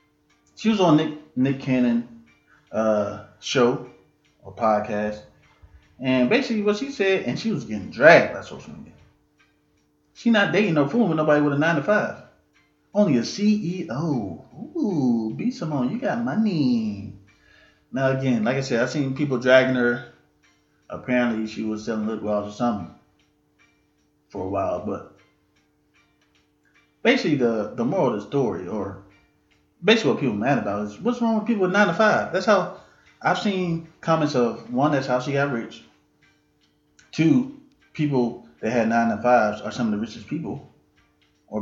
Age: 20-39